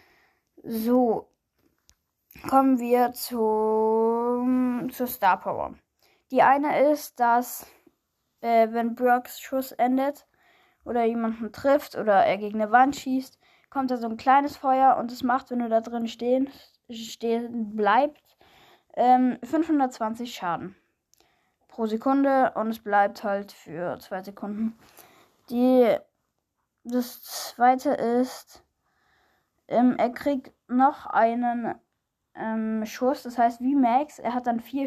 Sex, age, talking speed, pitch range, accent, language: female, 10-29, 125 wpm, 225-270 Hz, German, German